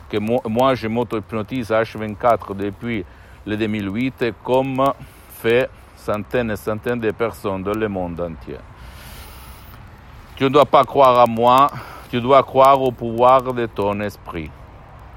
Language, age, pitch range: Italian, 60-79, 100-120 Hz